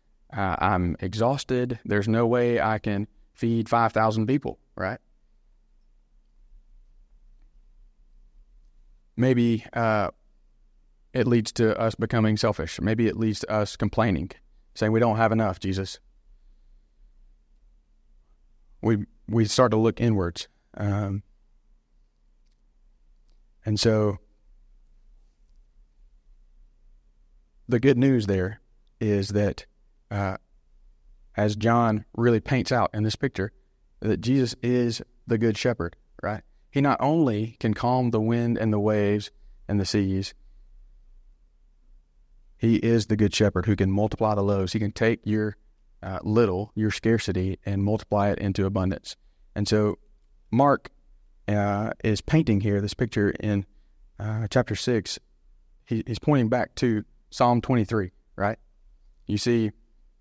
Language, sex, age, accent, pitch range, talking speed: English, male, 30-49, American, 95-115 Hz, 120 wpm